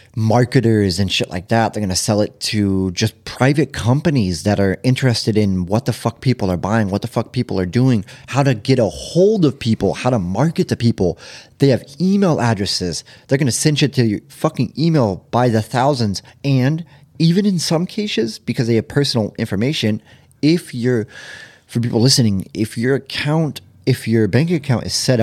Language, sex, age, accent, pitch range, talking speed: English, male, 30-49, American, 100-140 Hz, 195 wpm